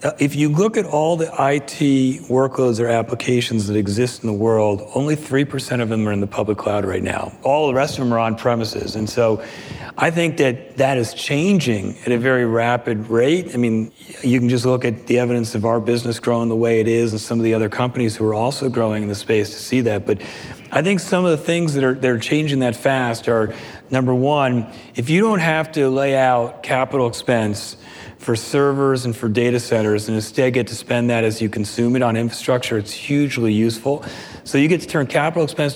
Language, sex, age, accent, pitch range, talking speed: English, male, 40-59, American, 115-135 Hz, 220 wpm